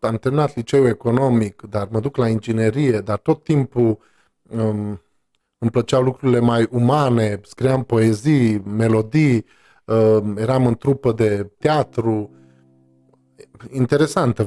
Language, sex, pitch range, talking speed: Romanian, male, 110-135 Hz, 110 wpm